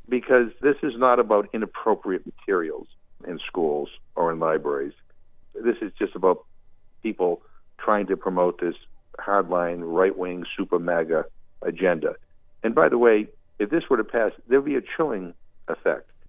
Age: 50-69